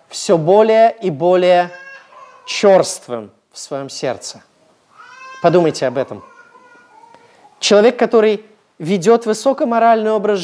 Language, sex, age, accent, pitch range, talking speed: Russian, male, 30-49, native, 180-255 Hz, 90 wpm